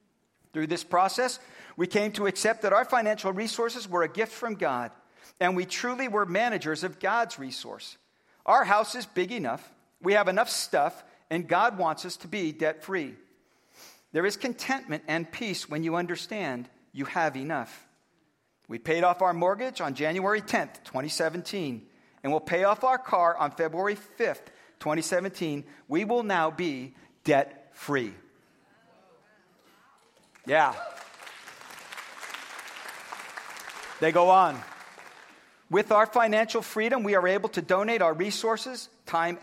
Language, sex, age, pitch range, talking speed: English, male, 50-69, 165-220 Hz, 140 wpm